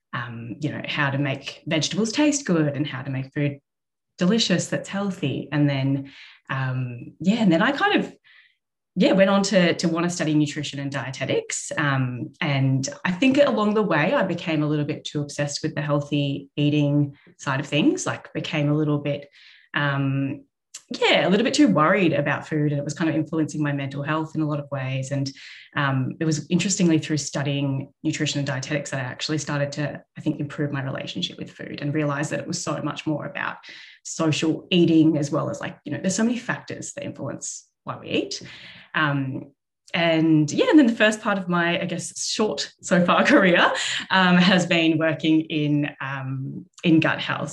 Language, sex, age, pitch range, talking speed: English, female, 20-39, 140-170 Hz, 200 wpm